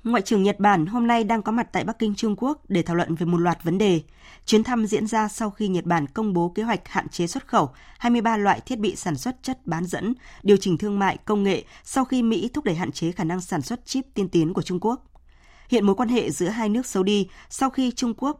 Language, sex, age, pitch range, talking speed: Vietnamese, female, 20-39, 170-225 Hz, 270 wpm